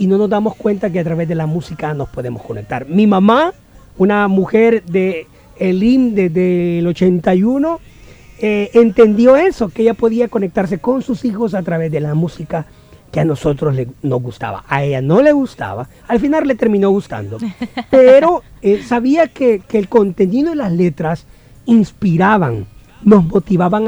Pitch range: 160-230 Hz